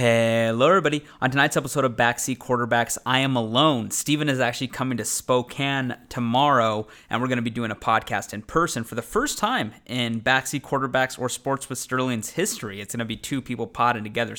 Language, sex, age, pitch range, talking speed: English, male, 20-39, 115-140 Hz, 200 wpm